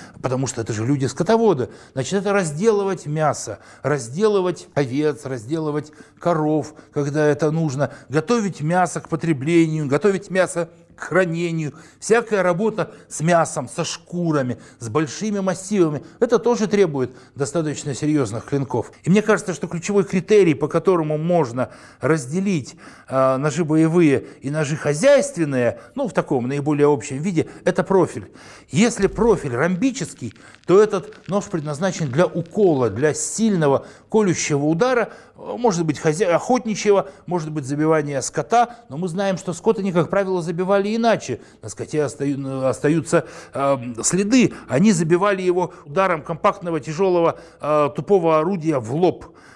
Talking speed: 130 wpm